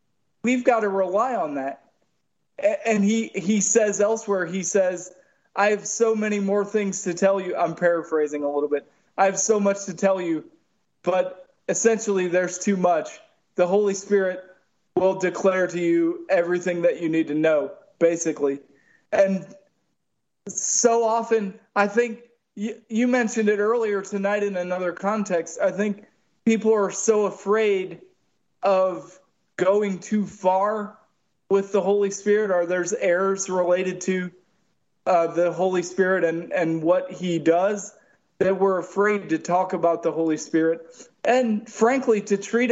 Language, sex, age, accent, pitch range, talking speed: English, male, 20-39, American, 180-210 Hz, 150 wpm